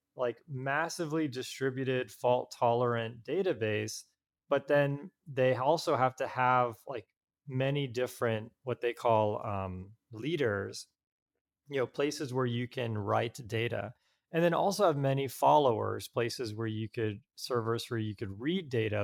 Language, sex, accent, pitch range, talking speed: English, male, American, 115-145 Hz, 140 wpm